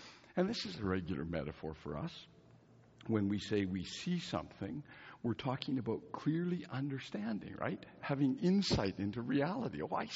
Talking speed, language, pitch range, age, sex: 155 wpm, English, 85-130 Hz, 60-79, male